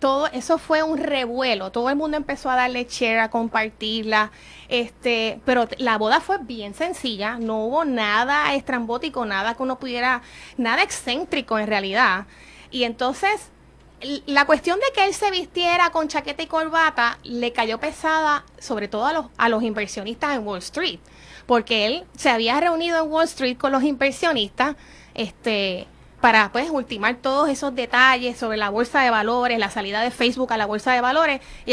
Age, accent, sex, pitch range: 30-49, American, female, 230-305 Hz